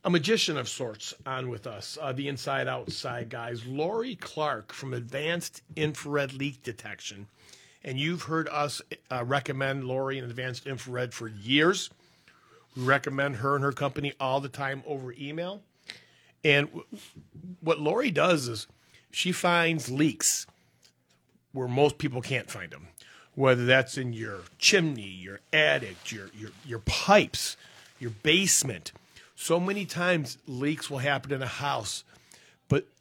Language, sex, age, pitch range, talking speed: English, male, 40-59, 120-150 Hz, 145 wpm